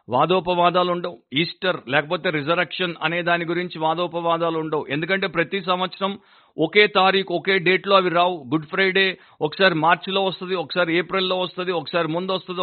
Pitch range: 155-185 Hz